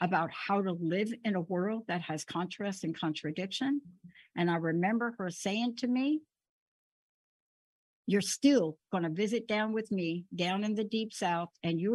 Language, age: English, 60-79